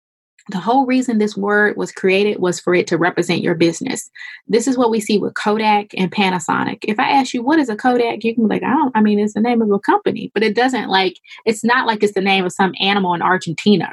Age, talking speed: 20-39, 260 wpm